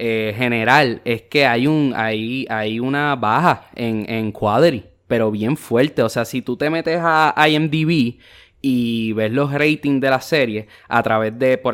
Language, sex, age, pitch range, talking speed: English, male, 20-39, 115-155 Hz, 185 wpm